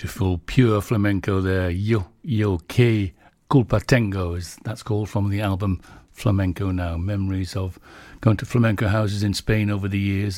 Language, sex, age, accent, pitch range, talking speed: English, male, 60-79, British, 100-125 Hz, 170 wpm